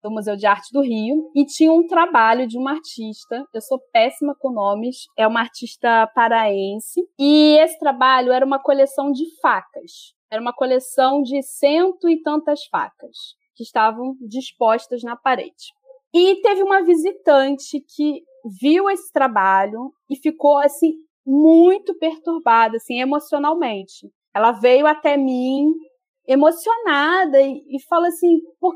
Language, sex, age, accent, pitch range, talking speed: Portuguese, female, 20-39, Brazilian, 260-335 Hz, 140 wpm